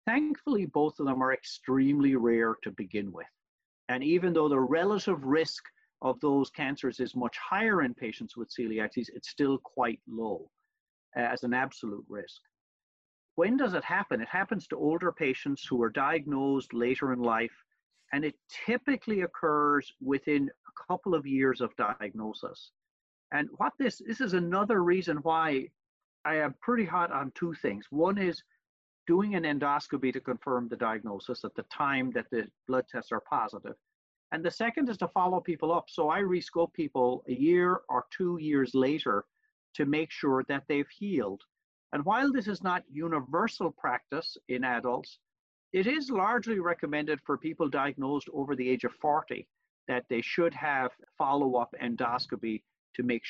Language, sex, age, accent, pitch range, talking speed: English, male, 50-69, American, 130-180 Hz, 165 wpm